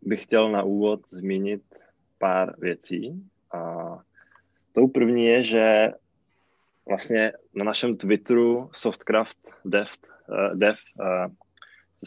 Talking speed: 100 wpm